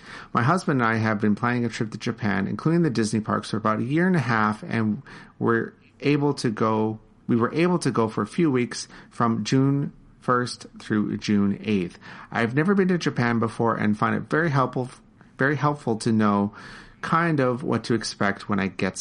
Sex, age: male, 40-59